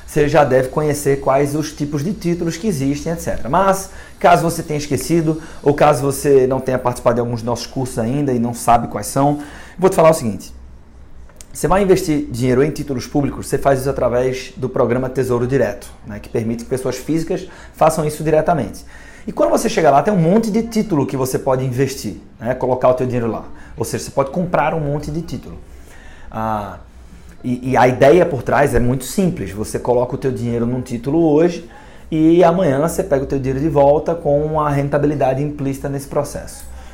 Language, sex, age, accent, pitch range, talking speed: Portuguese, male, 30-49, Brazilian, 120-155 Hz, 200 wpm